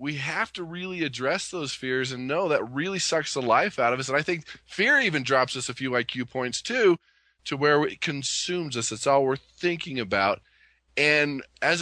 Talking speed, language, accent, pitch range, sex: 210 wpm, English, American, 125-160 Hz, male